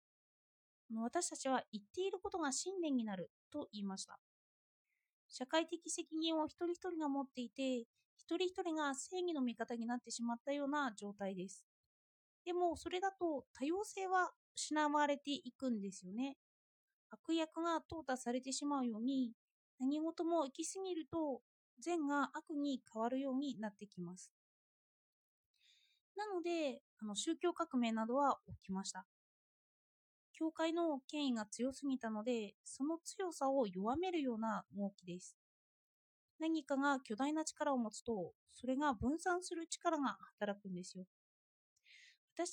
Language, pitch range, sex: Japanese, 235-330 Hz, female